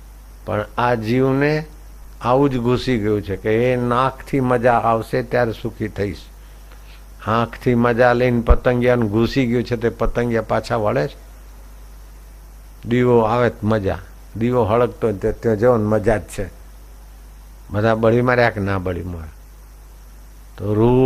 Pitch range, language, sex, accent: 90-125 Hz, Hindi, male, native